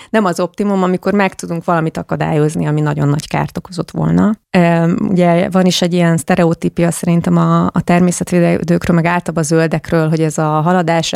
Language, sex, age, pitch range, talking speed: Hungarian, female, 30-49, 160-190 Hz, 170 wpm